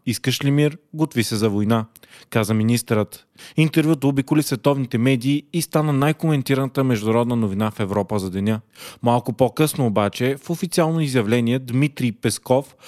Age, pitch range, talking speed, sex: 30-49, 115-155 Hz, 140 wpm, male